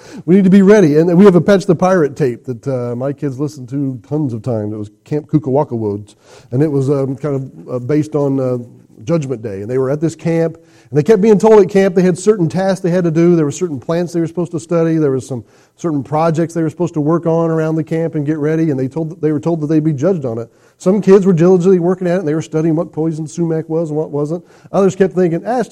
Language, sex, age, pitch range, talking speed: English, male, 40-59, 140-175 Hz, 280 wpm